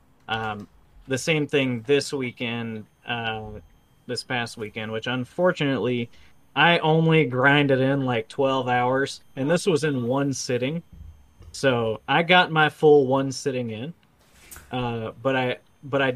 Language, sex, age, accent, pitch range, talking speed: English, male, 30-49, American, 110-135 Hz, 140 wpm